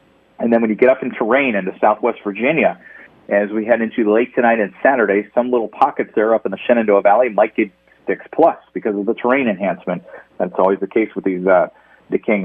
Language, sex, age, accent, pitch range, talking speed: English, male, 40-59, American, 100-120 Hz, 210 wpm